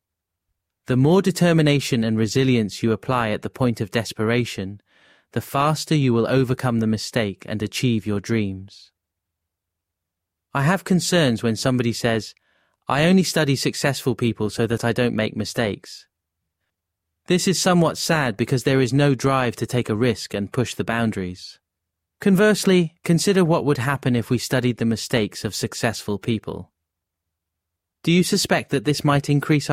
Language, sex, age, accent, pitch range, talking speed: English, male, 30-49, British, 100-135 Hz, 155 wpm